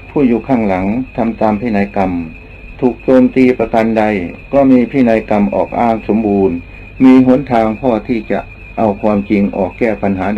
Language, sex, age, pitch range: Thai, male, 60-79, 100-125 Hz